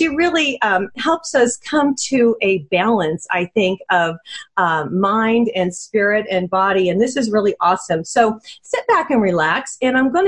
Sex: female